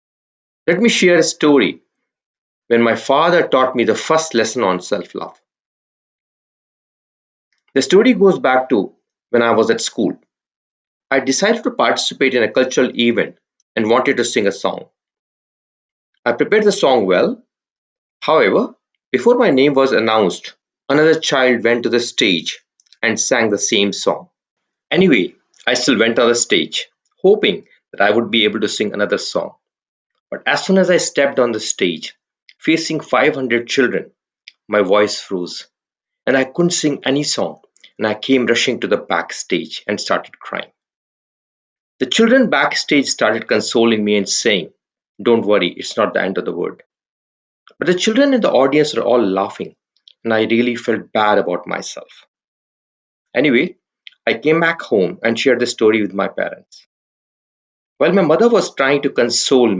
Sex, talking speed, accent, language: male, 160 wpm, Indian, English